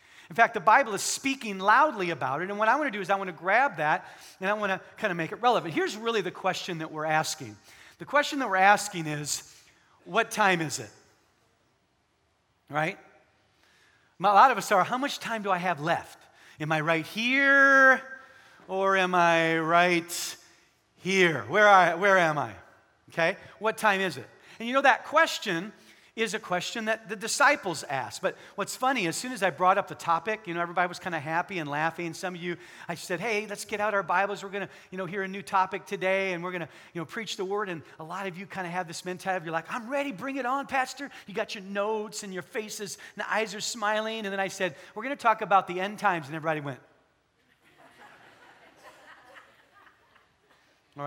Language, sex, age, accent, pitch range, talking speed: English, male, 40-59, American, 165-215 Hz, 220 wpm